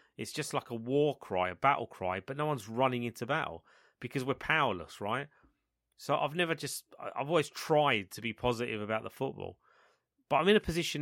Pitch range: 105-135 Hz